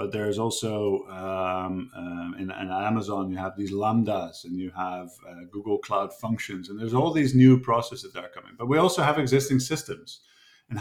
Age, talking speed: 50-69, 195 wpm